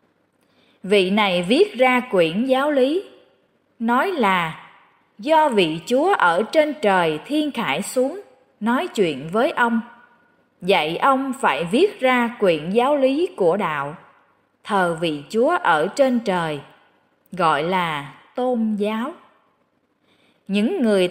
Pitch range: 185-260 Hz